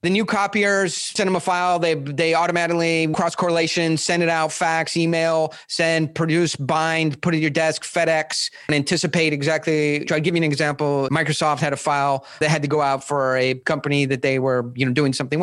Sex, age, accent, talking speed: male, 30-49, American, 200 wpm